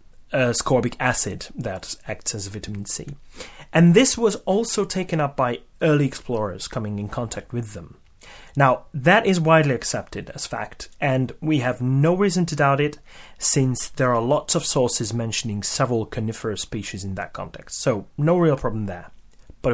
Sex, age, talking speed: male, 30-49, 170 wpm